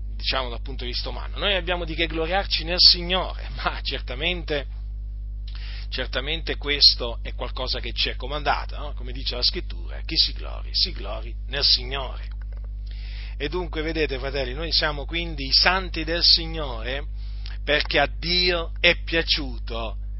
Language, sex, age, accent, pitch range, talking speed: Italian, male, 40-59, native, 100-155 Hz, 150 wpm